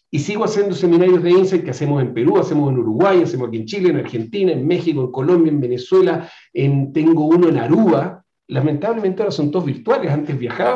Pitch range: 145-180 Hz